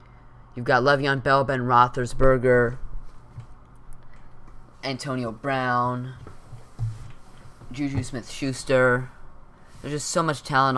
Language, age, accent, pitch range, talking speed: English, 20-39, American, 120-145 Hz, 85 wpm